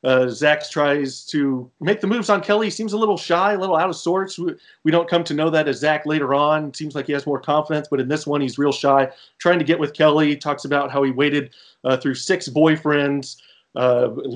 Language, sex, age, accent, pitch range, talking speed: English, male, 30-49, American, 140-165 Hz, 235 wpm